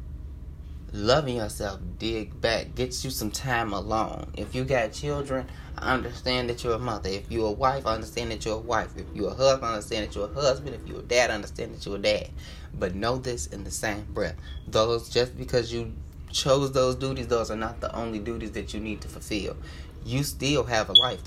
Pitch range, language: 75-110 Hz, English